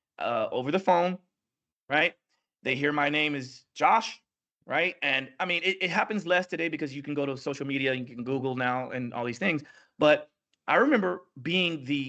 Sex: male